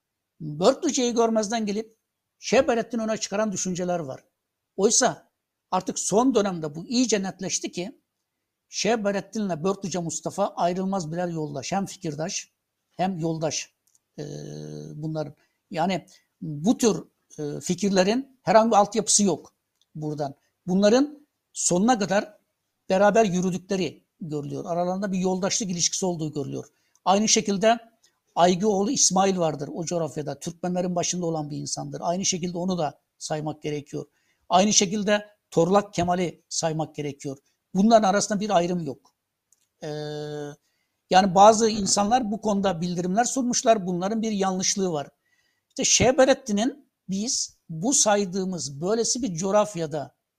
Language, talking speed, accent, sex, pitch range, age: Turkish, 115 wpm, native, male, 160-215 Hz, 60-79